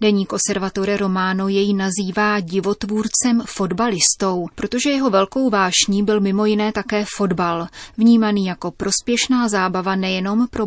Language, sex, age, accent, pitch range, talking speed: Czech, female, 30-49, native, 190-220 Hz, 125 wpm